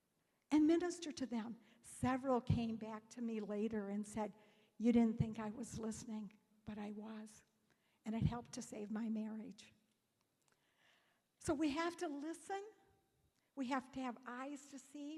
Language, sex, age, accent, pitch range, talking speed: English, female, 60-79, American, 235-300 Hz, 160 wpm